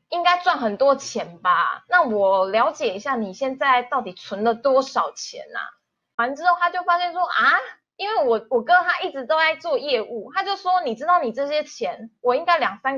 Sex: female